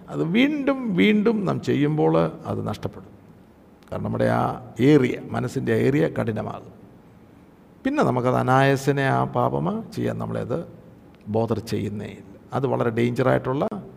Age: 50-69